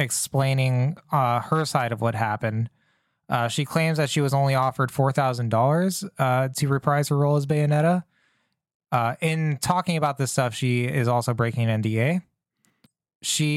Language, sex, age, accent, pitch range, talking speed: English, male, 20-39, American, 115-150 Hz, 170 wpm